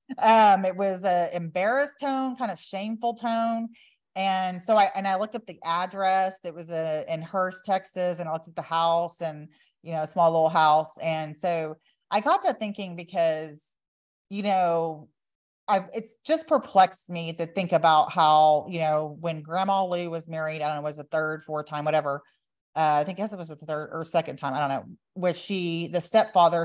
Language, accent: English, American